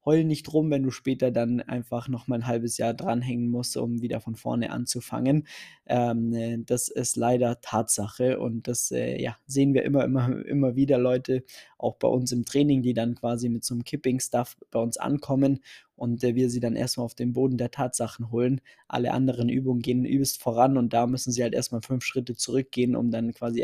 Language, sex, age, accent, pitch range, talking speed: German, male, 20-39, German, 120-140 Hz, 205 wpm